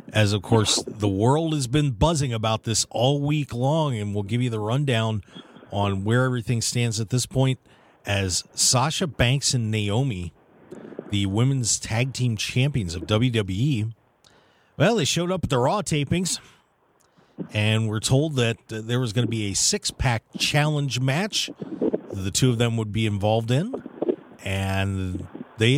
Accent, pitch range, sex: American, 105-140 Hz, male